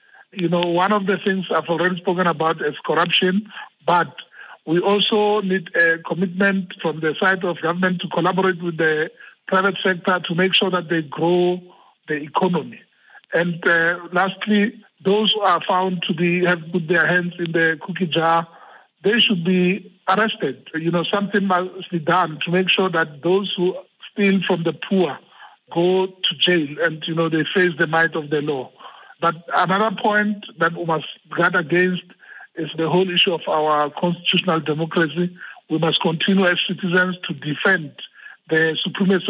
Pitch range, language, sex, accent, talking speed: 165-190 Hz, English, male, Nigerian, 170 wpm